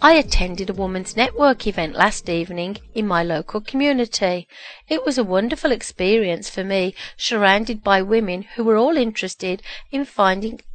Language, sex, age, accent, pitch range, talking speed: English, female, 40-59, British, 185-245 Hz, 155 wpm